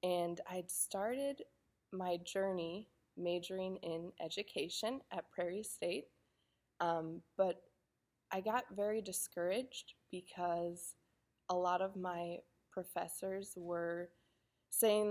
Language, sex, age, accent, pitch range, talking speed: English, female, 20-39, American, 175-195 Hz, 100 wpm